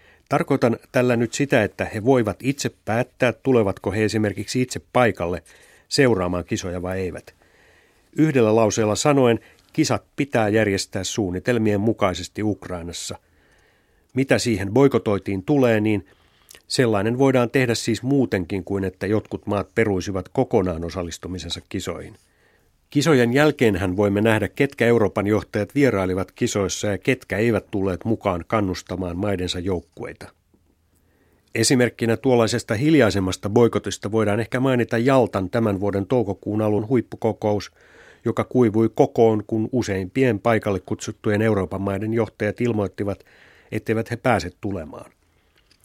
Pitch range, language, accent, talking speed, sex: 95-120 Hz, Finnish, native, 120 wpm, male